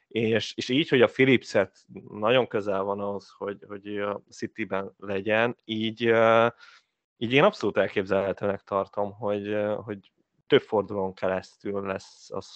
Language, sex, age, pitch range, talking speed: Hungarian, male, 30-49, 100-125 Hz, 135 wpm